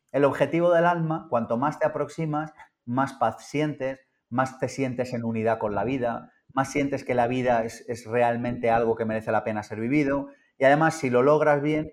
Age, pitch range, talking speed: 30-49, 115-140 Hz, 200 wpm